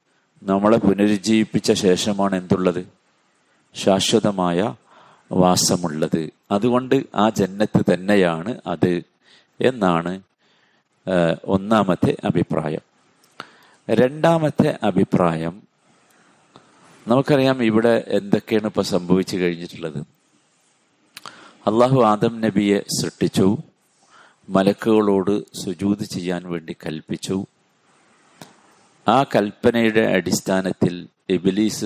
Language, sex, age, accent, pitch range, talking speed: Malayalam, male, 50-69, native, 90-110 Hz, 65 wpm